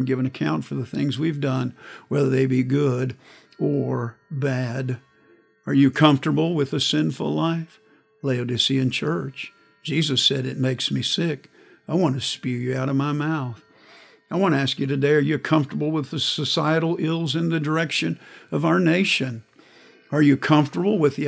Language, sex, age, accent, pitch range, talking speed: English, male, 50-69, American, 135-160 Hz, 170 wpm